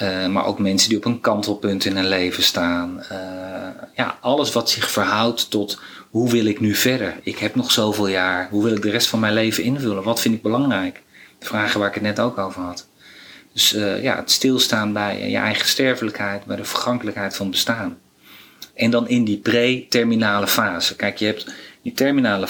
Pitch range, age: 105-125 Hz, 40-59